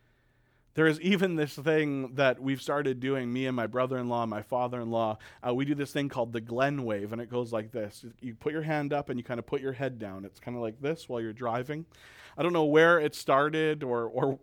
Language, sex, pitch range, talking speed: English, male, 120-145 Hz, 240 wpm